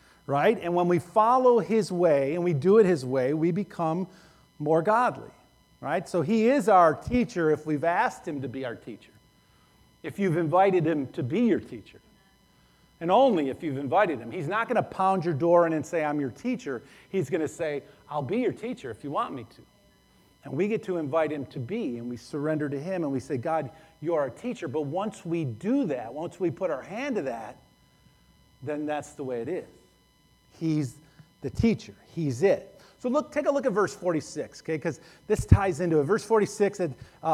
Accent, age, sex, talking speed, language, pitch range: American, 50-69, male, 215 wpm, English, 150-205 Hz